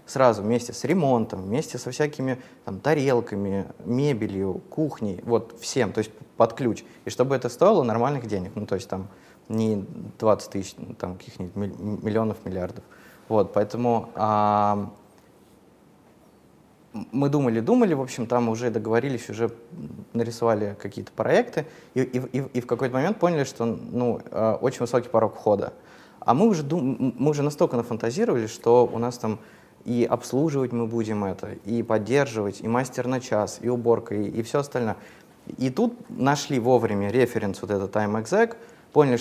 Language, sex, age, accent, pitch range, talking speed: Russian, male, 20-39, native, 105-130 Hz, 150 wpm